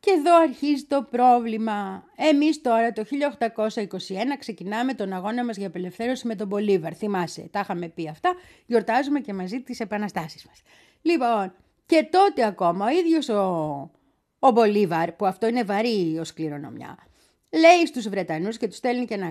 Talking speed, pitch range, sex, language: 160 wpm, 195-325 Hz, female, Greek